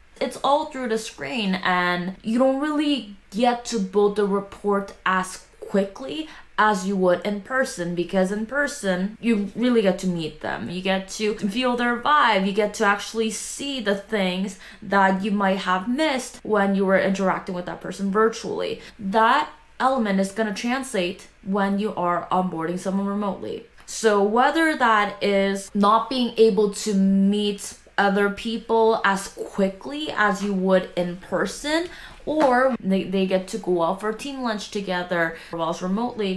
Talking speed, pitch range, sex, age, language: 165 wpm, 190-230 Hz, female, 20-39, English